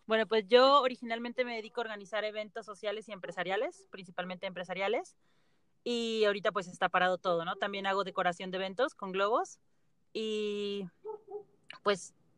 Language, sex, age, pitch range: Spanish, female, 30-49, 175-220 Hz